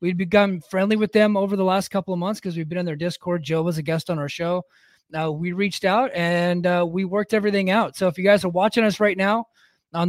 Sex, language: male, English